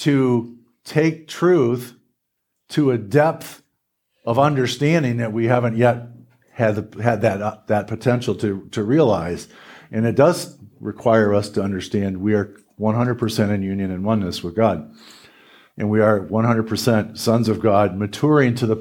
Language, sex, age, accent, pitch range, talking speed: English, male, 50-69, American, 105-125 Hz, 165 wpm